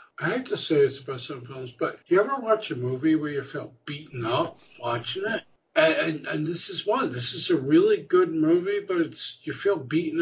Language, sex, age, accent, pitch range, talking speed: English, male, 60-79, American, 135-220 Hz, 225 wpm